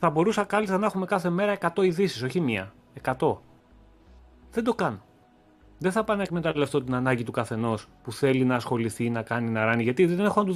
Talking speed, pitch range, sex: 215 wpm, 115-190 Hz, male